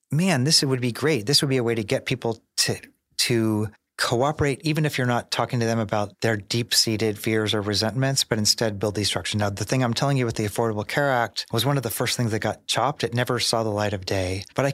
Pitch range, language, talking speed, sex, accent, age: 110-130 Hz, English, 255 wpm, male, American, 30-49